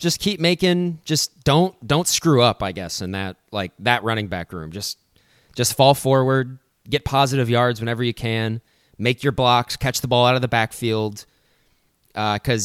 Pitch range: 105-135 Hz